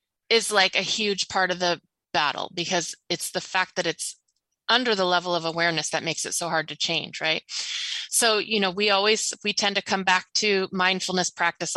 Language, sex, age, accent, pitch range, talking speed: English, female, 20-39, American, 175-220 Hz, 205 wpm